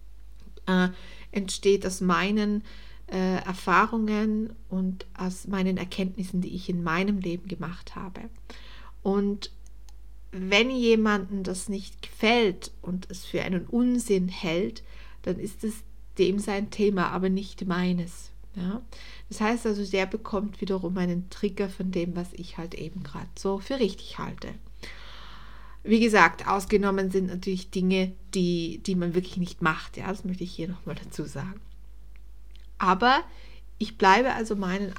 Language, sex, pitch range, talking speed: German, female, 180-210 Hz, 140 wpm